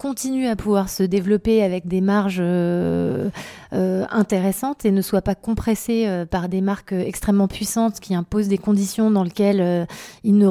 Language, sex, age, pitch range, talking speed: French, female, 30-49, 185-210 Hz, 175 wpm